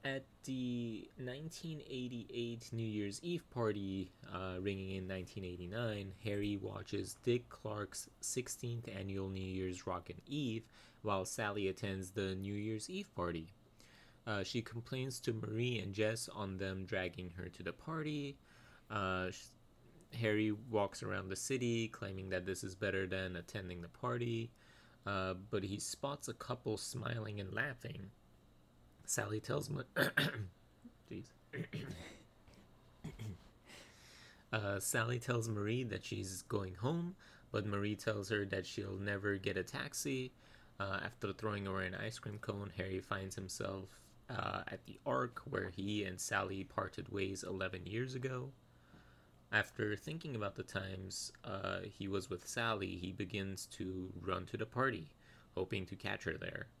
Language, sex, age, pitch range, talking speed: English, male, 20-39, 95-120 Hz, 145 wpm